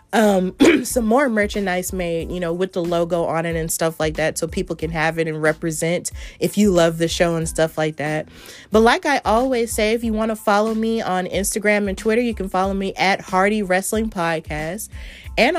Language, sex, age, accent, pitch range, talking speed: English, female, 30-49, American, 180-225 Hz, 215 wpm